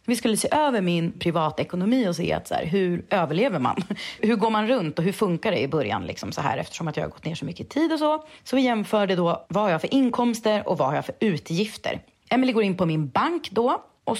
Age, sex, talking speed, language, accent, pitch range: 30-49, female, 260 wpm, English, Swedish, 165-245 Hz